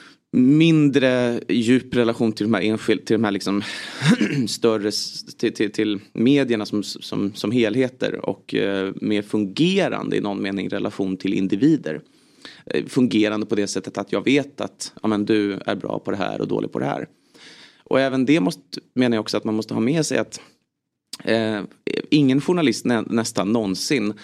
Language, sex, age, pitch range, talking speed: Swedish, male, 30-49, 100-120 Hz, 180 wpm